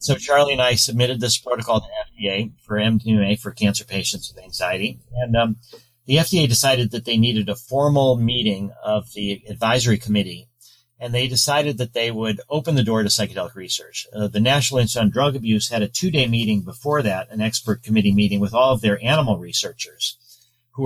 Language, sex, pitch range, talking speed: English, male, 110-130 Hz, 195 wpm